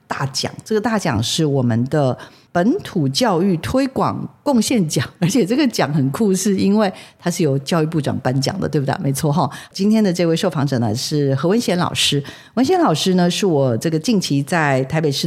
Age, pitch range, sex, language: 50-69, 145-195 Hz, female, Chinese